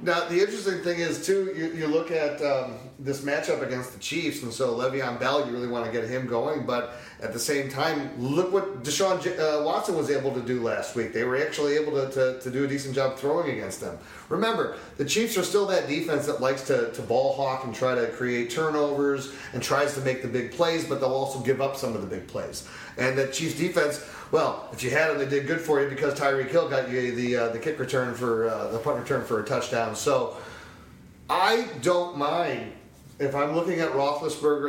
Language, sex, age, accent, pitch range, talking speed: English, male, 40-59, American, 135-175 Hz, 230 wpm